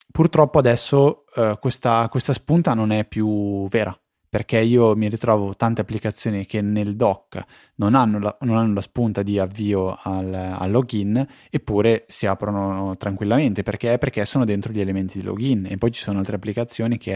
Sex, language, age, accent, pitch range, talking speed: male, Italian, 20-39, native, 100-115 Hz, 175 wpm